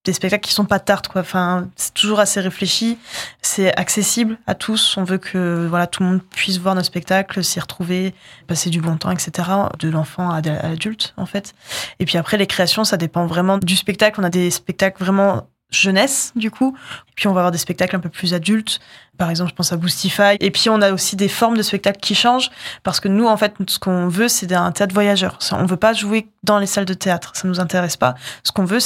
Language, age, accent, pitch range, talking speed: French, 20-39, French, 180-200 Hz, 235 wpm